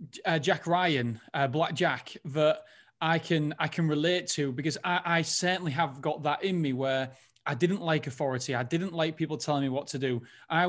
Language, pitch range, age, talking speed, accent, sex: English, 145-170 Hz, 30-49, 210 wpm, British, male